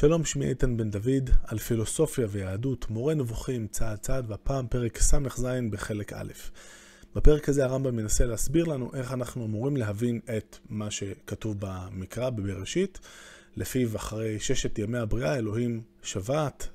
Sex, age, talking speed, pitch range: male, 20-39, 140 wpm, 105-135 Hz